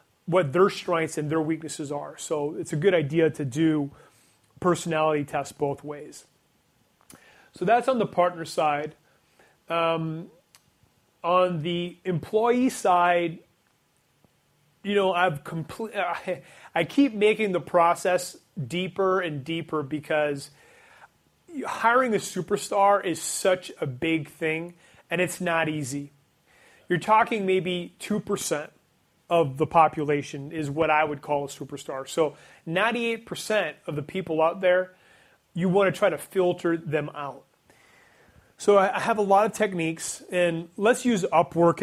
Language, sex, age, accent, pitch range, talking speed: English, male, 30-49, American, 155-185 Hz, 135 wpm